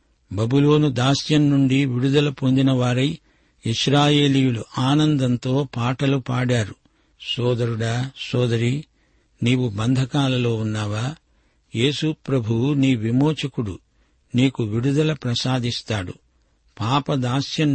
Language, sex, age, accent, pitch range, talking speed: Telugu, male, 60-79, native, 120-140 Hz, 70 wpm